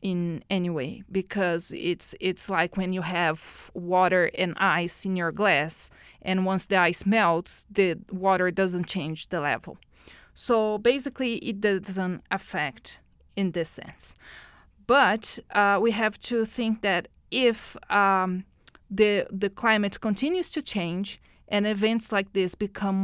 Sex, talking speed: female, 145 wpm